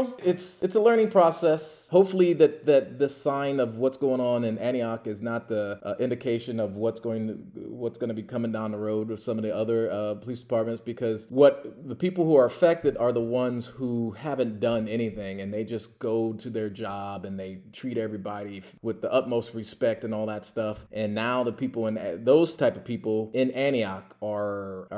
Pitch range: 105-130 Hz